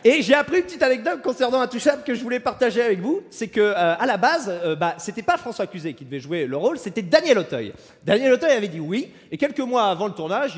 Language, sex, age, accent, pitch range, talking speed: French, male, 40-59, French, 185-275 Hz, 255 wpm